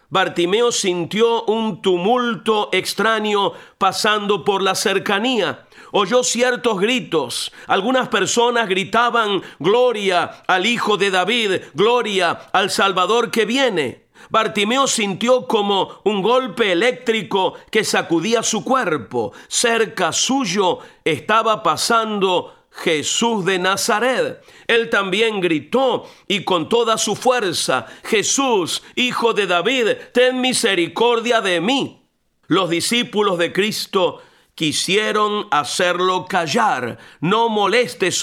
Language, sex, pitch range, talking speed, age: Spanish, male, 195-245 Hz, 105 wpm, 50-69